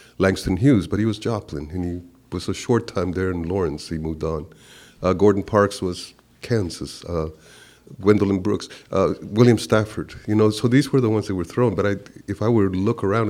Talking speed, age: 210 wpm, 50-69